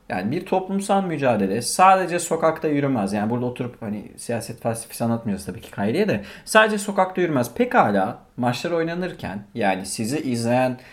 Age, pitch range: 40-59, 110-145 Hz